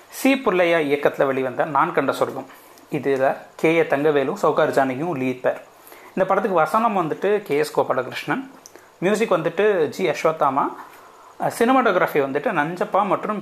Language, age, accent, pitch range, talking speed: Tamil, 30-49, native, 140-205 Hz, 125 wpm